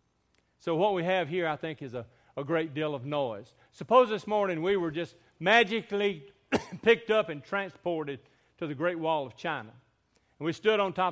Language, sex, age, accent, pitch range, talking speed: English, male, 50-69, American, 130-170 Hz, 195 wpm